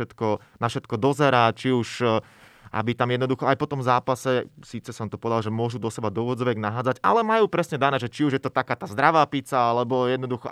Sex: male